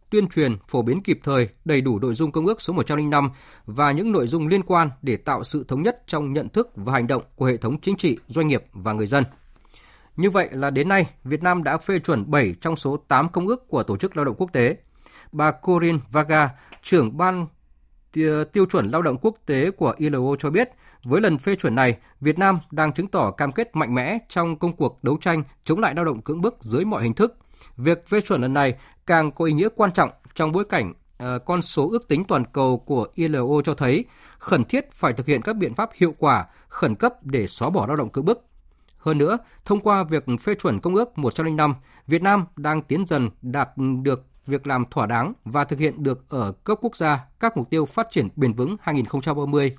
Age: 20-39